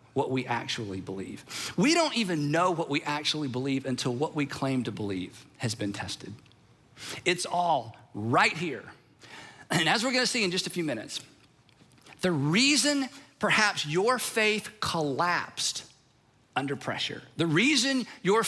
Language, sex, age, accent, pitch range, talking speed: English, male, 50-69, American, 135-190 Hz, 150 wpm